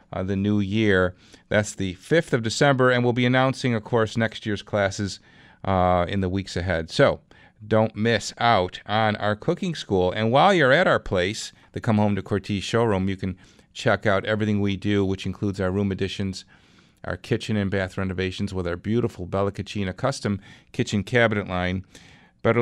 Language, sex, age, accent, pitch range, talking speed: English, male, 40-59, American, 95-120 Hz, 185 wpm